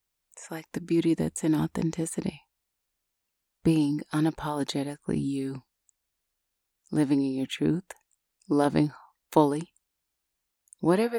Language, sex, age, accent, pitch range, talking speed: English, female, 30-49, American, 125-165 Hz, 90 wpm